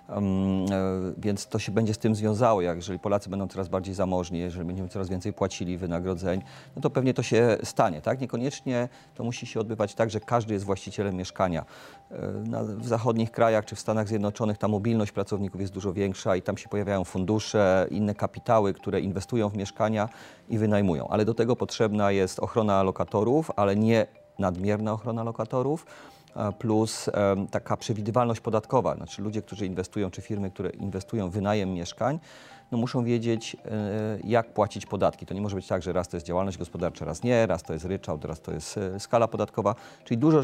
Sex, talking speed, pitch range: male, 180 wpm, 95-115 Hz